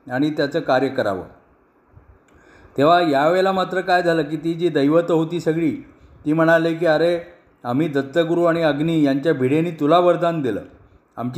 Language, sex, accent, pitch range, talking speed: Marathi, male, native, 140-170 Hz, 115 wpm